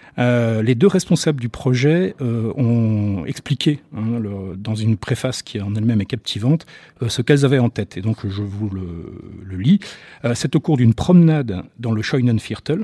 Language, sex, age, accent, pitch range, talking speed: French, male, 40-59, French, 115-150 Hz, 190 wpm